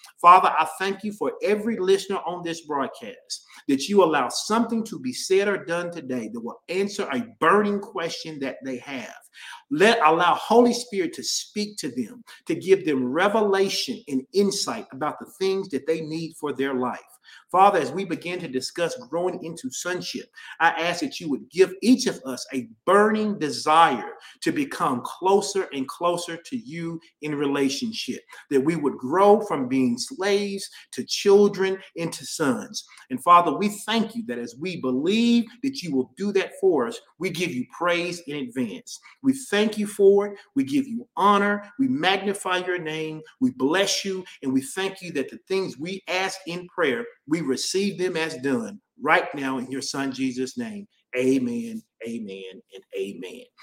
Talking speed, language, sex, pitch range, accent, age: 175 wpm, English, male, 160-225 Hz, American, 40-59